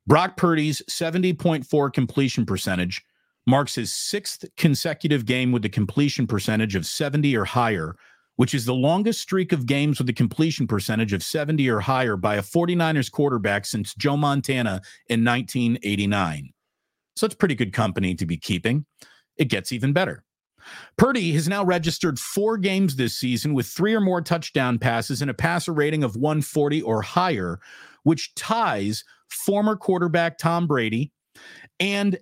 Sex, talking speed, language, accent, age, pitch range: male, 155 wpm, English, American, 40-59, 120-170 Hz